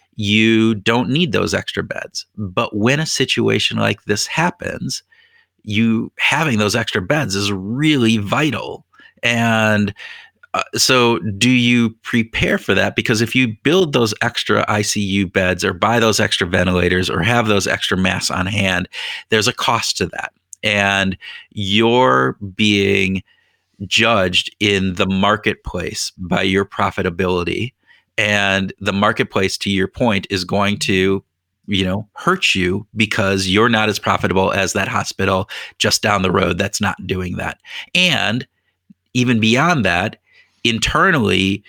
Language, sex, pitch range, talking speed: English, male, 95-115 Hz, 140 wpm